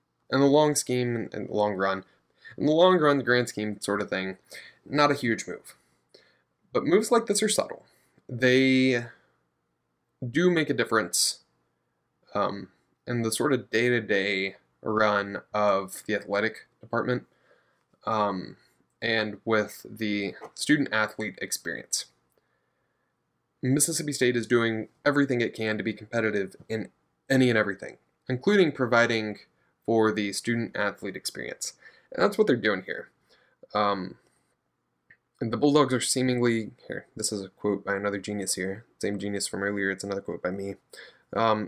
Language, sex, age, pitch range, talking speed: English, male, 10-29, 100-130 Hz, 145 wpm